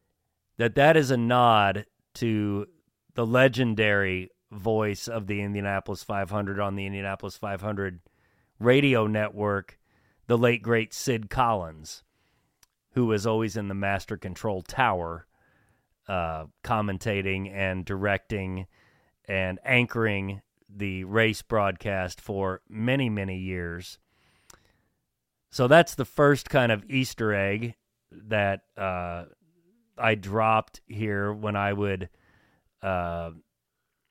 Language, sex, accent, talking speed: English, male, American, 110 wpm